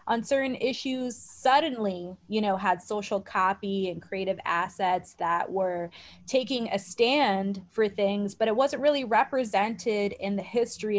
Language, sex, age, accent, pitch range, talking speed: English, female, 20-39, American, 185-215 Hz, 145 wpm